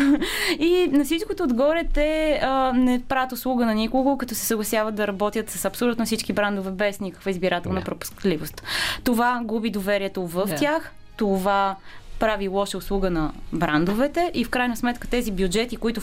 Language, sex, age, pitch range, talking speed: Bulgarian, female, 20-39, 190-240 Hz, 155 wpm